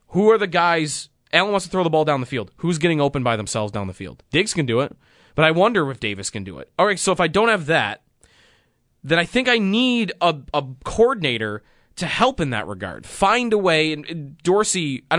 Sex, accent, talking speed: male, American, 235 wpm